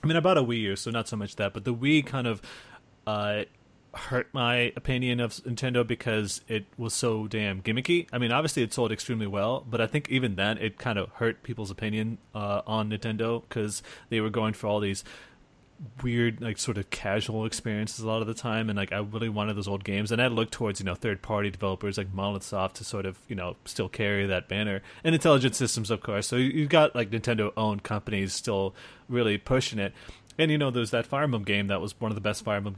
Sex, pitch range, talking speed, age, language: male, 105-125 Hz, 235 wpm, 30-49, English